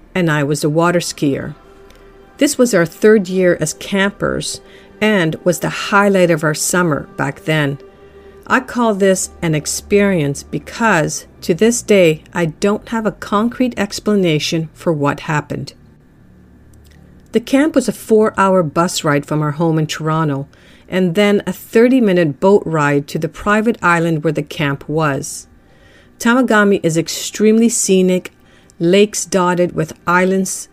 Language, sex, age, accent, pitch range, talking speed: English, female, 50-69, American, 155-200 Hz, 150 wpm